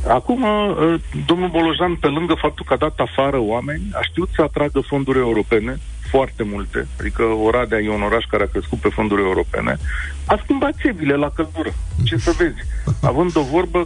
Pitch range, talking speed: 110-165 Hz, 175 wpm